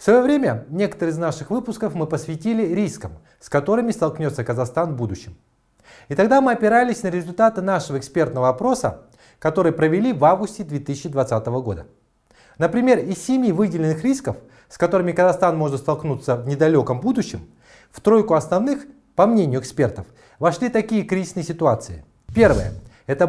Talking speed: 145 wpm